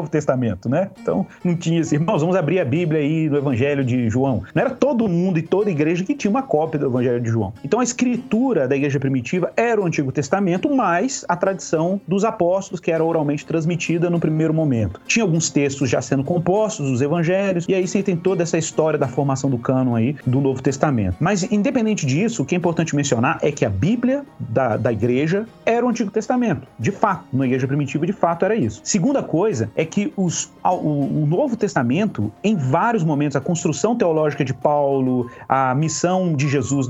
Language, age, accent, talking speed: Portuguese, 40-59, Brazilian, 205 wpm